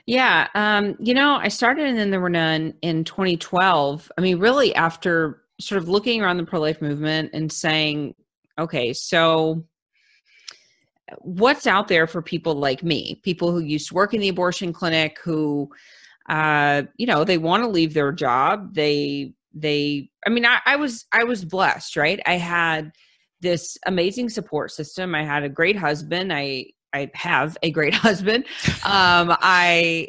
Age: 30-49